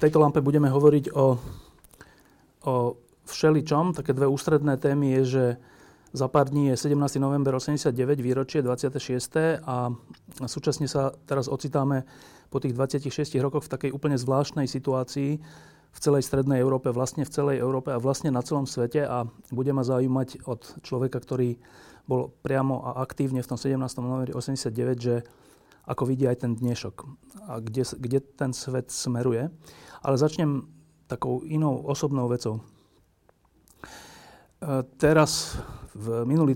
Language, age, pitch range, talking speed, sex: Slovak, 30-49, 125-145 Hz, 145 wpm, male